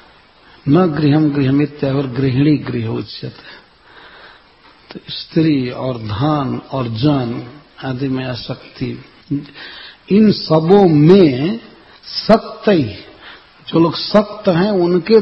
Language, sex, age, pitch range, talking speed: English, male, 60-79, 145-185 Hz, 85 wpm